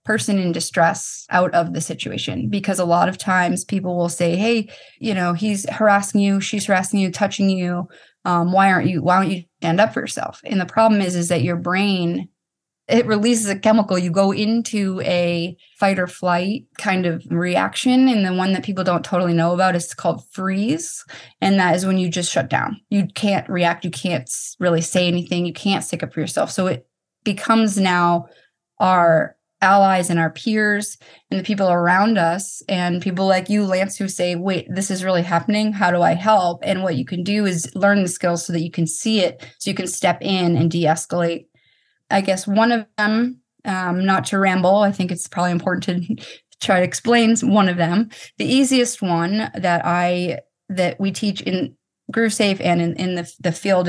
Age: 20-39